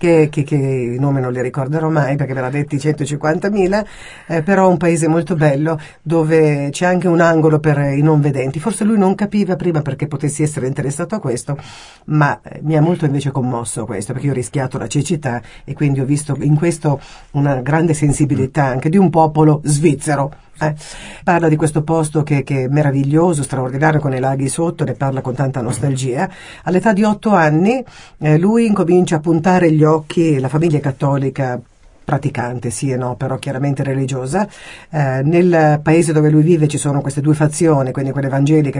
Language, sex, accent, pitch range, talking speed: Italian, female, native, 140-170 Hz, 185 wpm